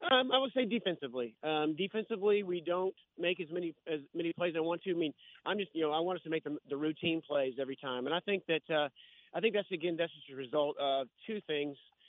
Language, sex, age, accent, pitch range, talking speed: English, male, 30-49, American, 140-165 Hz, 260 wpm